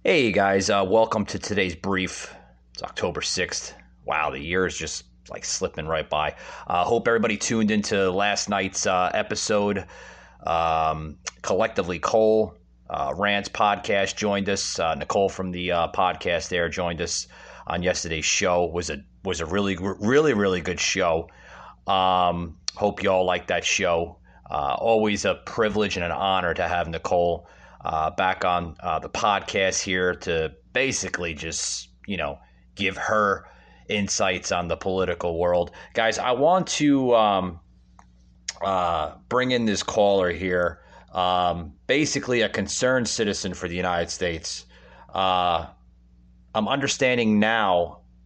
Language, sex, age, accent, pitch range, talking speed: English, male, 30-49, American, 80-100 Hz, 150 wpm